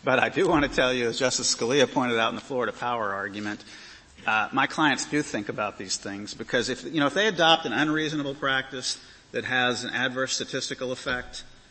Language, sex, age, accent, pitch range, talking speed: English, male, 40-59, American, 125-160 Hz, 210 wpm